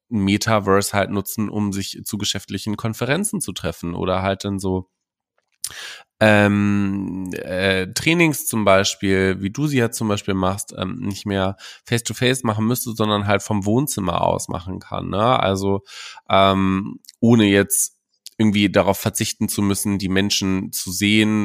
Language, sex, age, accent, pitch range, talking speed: German, male, 20-39, German, 95-105 Hz, 145 wpm